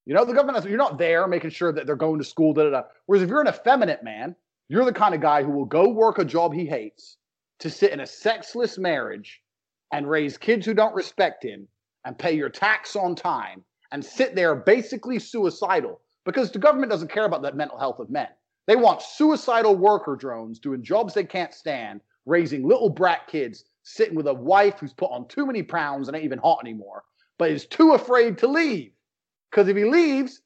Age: 30-49